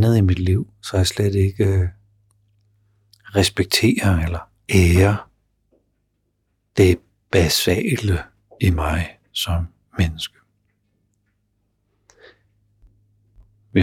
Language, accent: Danish, native